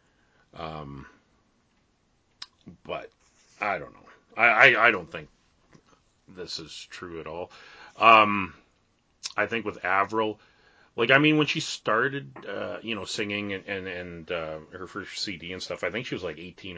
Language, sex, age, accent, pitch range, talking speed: English, male, 30-49, American, 90-115 Hz, 155 wpm